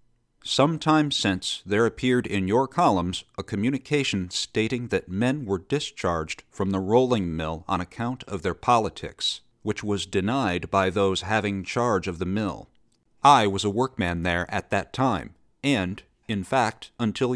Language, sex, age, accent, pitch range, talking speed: English, male, 50-69, American, 95-125 Hz, 160 wpm